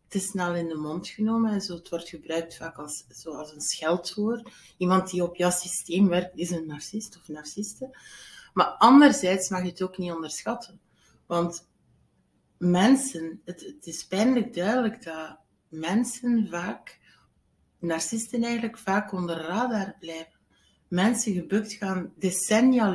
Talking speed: 140 wpm